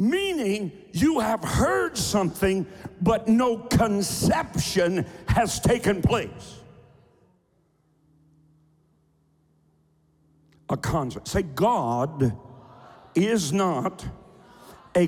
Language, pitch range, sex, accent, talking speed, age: English, 150-225 Hz, male, American, 70 wpm, 60-79